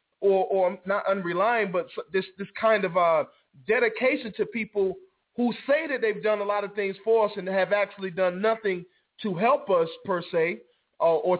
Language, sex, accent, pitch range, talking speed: English, male, American, 180-225 Hz, 190 wpm